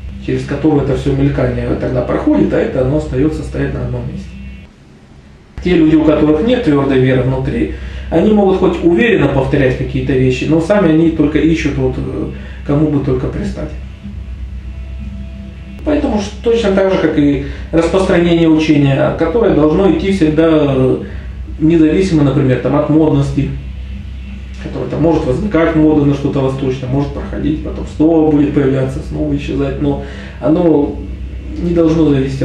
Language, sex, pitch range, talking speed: Russian, male, 125-160 Hz, 145 wpm